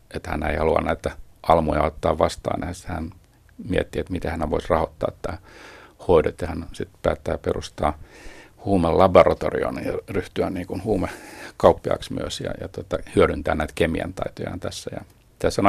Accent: native